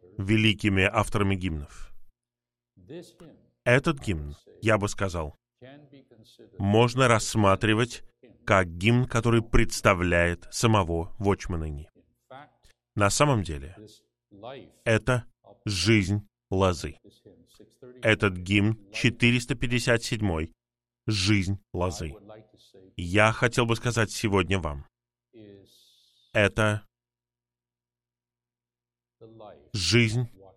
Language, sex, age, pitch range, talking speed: Russian, male, 20-39, 80-115 Hz, 70 wpm